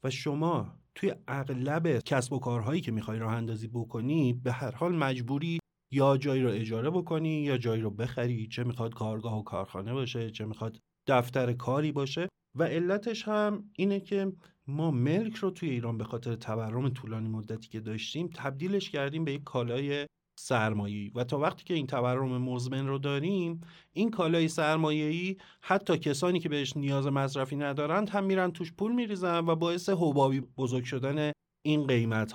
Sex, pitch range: male, 120-165 Hz